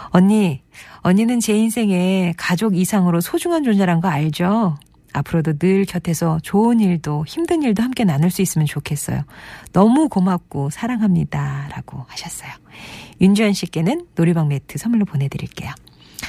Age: 40-59